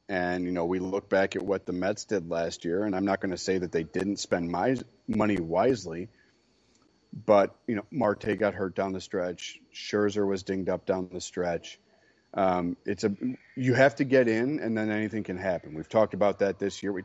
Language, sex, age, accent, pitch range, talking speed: English, male, 40-59, American, 95-110 Hz, 220 wpm